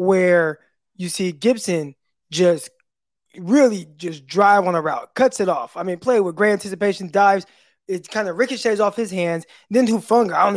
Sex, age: male, 20-39